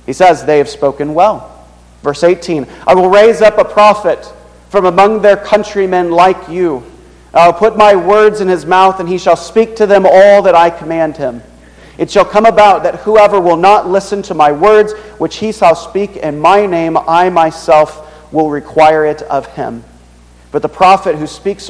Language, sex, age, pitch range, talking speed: English, male, 40-59, 145-180 Hz, 195 wpm